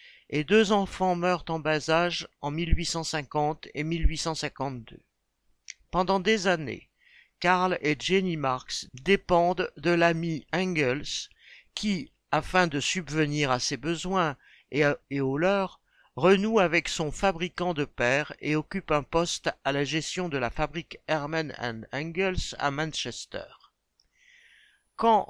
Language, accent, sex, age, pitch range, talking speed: French, French, male, 60-79, 150-185 Hz, 125 wpm